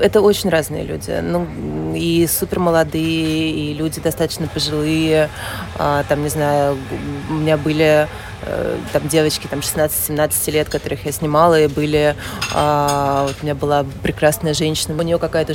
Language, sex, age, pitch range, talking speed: Russian, female, 20-39, 145-165 Hz, 145 wpm